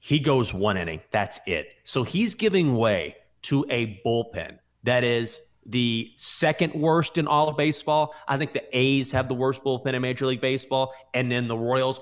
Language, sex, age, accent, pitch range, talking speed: English, male, 30-49, American, 120-155 Hz, 190 wpm